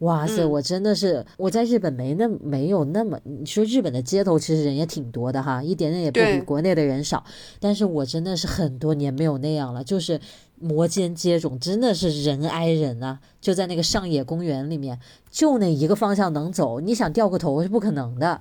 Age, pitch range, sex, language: 20-39, 145-200 Hz, female, Chinese